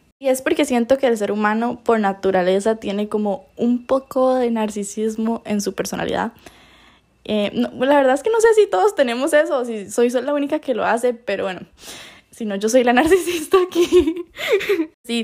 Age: 10-29